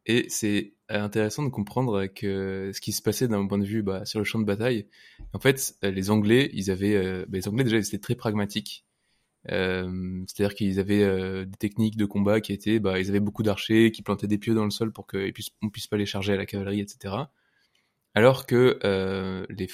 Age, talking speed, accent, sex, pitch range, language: 20-39, 220 wpm, French, male, 100-115 Hz, French